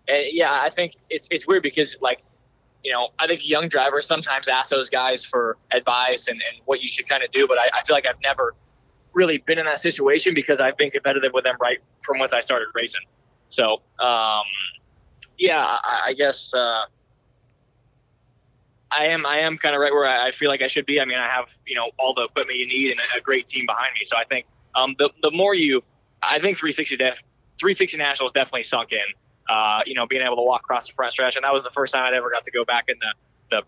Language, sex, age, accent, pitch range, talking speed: English, male, 20-39, American, 125-145 Hz, 240 wpm